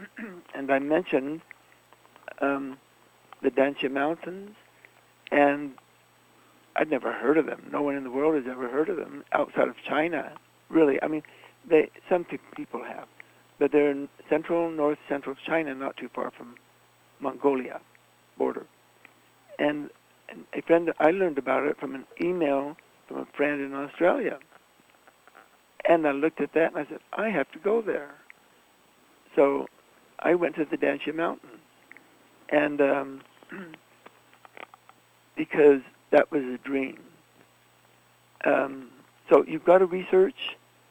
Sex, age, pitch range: male, 60-79, 125-160 Hz